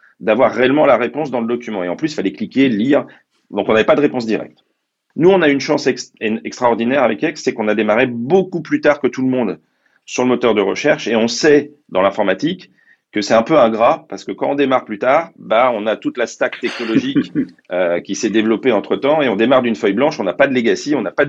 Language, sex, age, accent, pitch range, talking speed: French, male, 40-59, French, 120-155 Hz, 250 wpm